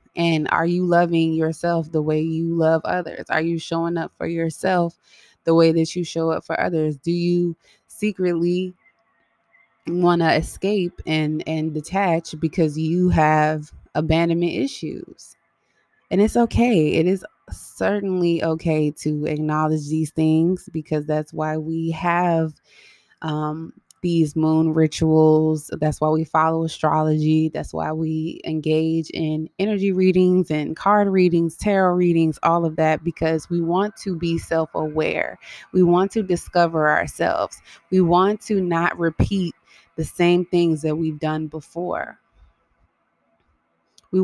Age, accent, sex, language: 20-39, American, female, English